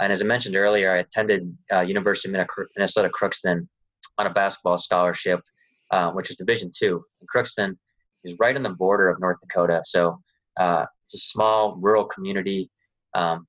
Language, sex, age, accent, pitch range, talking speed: English, male, 20-39, American, 90-100 Hz, 170 wpm